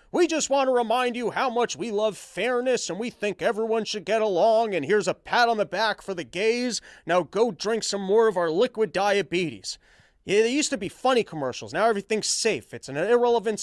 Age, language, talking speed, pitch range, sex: 30-49, English, 215 wpm, 180-235 Hz, male